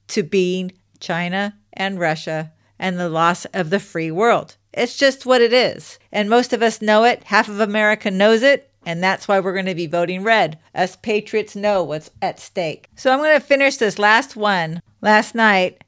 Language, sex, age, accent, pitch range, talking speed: English, female, 50-69, American, 190-275 Hz, 200 wpm